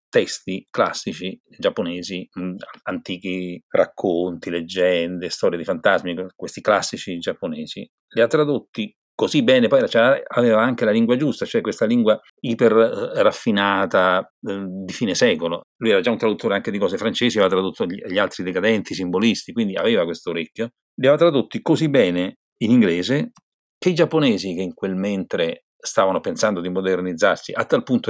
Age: 40-59